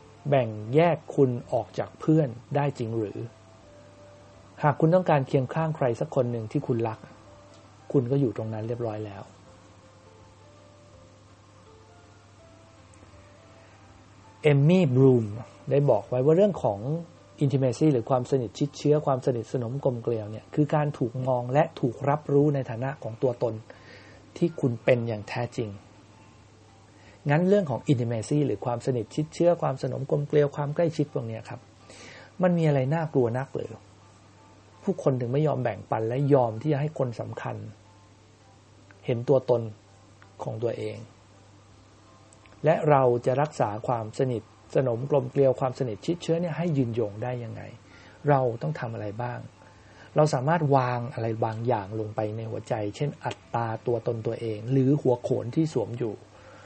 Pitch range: 105-140 Hz